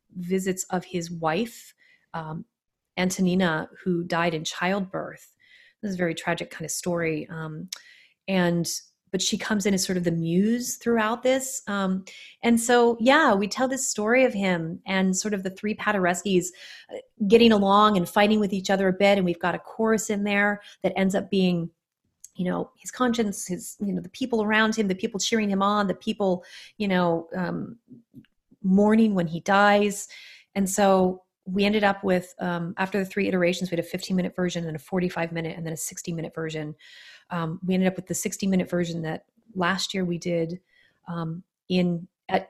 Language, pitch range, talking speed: English, 170-205 Hz, 195 wpm